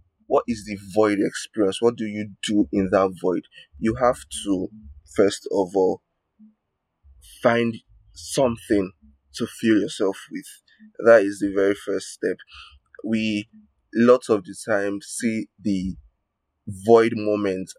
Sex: male